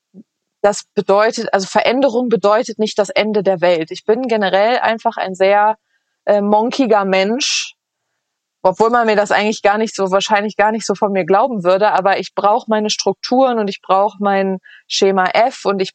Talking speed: 180 wpm